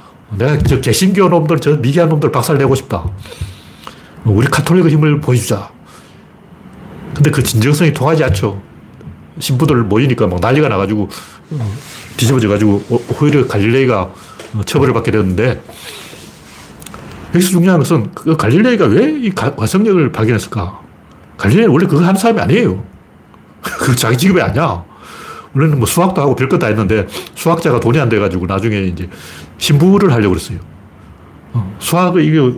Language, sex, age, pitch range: Korean, male, 40-59, 105-155 Hz